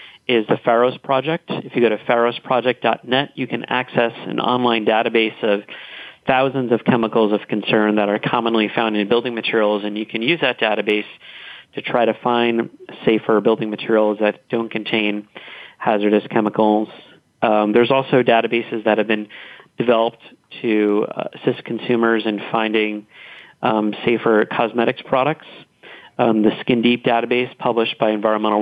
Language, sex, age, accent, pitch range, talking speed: English, male, 40-59, American, 110-120 Hz, 150 wpm